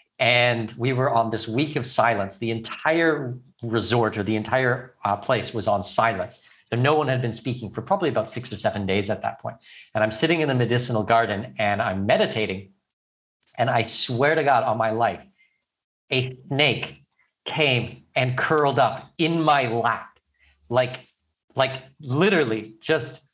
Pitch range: 130-190 Hz